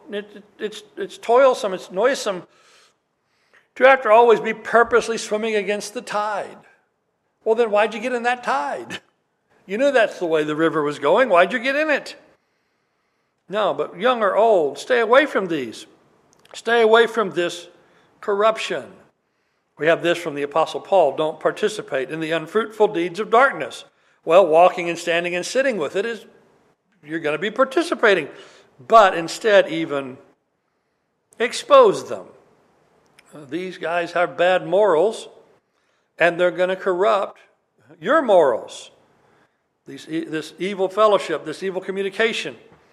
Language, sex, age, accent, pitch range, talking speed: English, male, 60-79, American, 170-230 Hz, 145 wpm